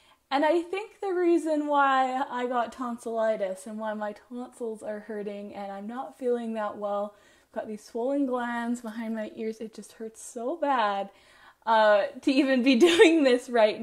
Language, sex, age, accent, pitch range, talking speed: English, female, 20-39, American, 220-265 Hz, 180 wpm